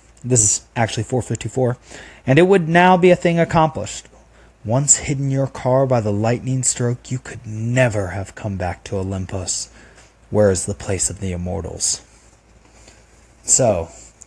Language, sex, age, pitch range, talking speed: English, male, 30-49, 105-135 Hz, 150 wpm